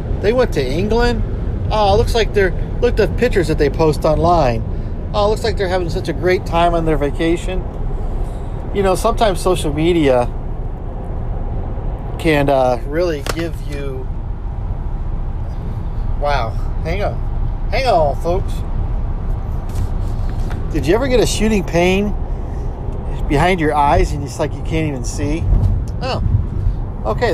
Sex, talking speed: male, 145 wpm